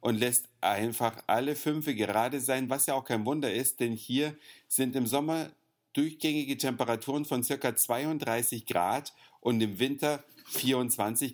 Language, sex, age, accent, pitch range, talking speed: German, male, 50-69, German, 115-145 Hz, 150 wpm